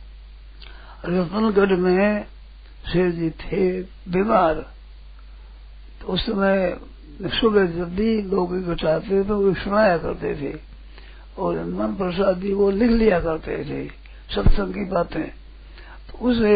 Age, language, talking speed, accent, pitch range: 60-79, Hindi, 105 wpm, native, 175-200 Hz